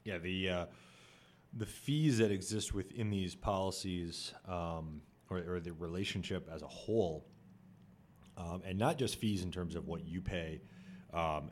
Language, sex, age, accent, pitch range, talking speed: English, male, 30-49, American, 85-100 Hz, 155 wpm